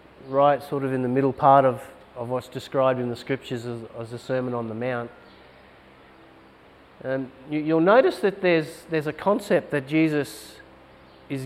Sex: male